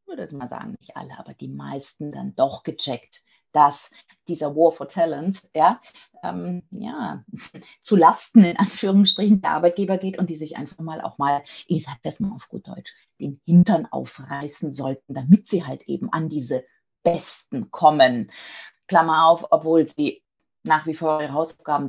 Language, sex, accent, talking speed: German, female, German, 175 wpm